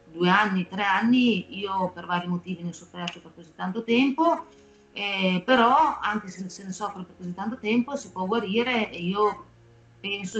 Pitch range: 180-220 Hz